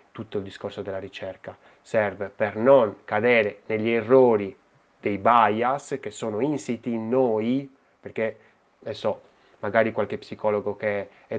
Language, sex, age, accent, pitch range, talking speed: Italian, male, 20-39, native, 105-135 Hz, 130 wpm